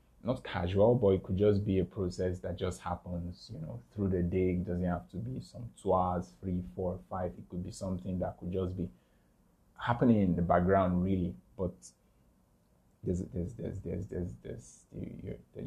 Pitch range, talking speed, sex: 90-105 Hz, 195 wpm, male